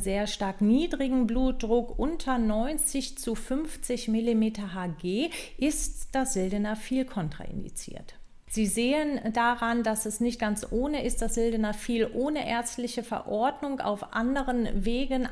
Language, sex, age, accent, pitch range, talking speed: German, female, 40-59, German, 210-255 Hz, 120 wpm